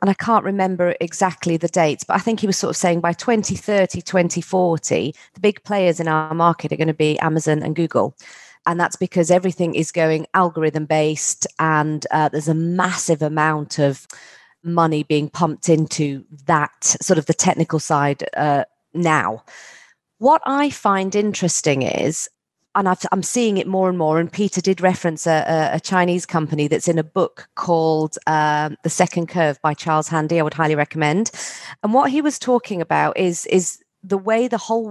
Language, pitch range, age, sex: English, 155-190 Hz, 40-59, female